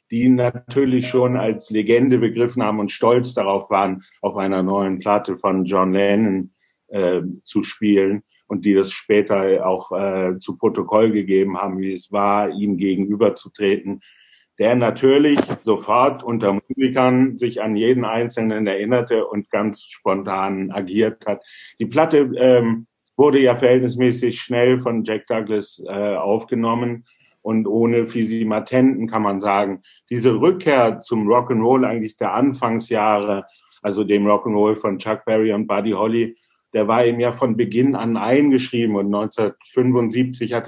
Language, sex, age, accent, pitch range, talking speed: German, male, 50-69, German, 100-120 Hz, 145 wpm